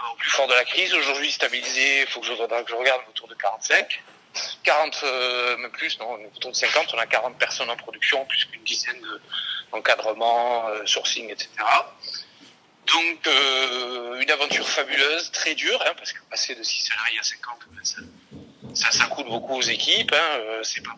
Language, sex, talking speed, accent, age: French, male, 195 wpm, French, 40-59